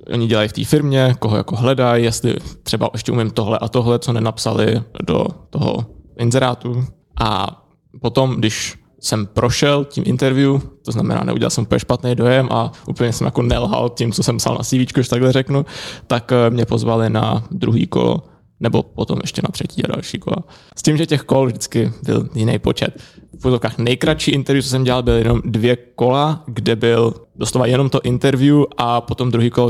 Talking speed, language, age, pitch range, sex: 185 wpm, Czech, 20-39, 115-135 Hz, male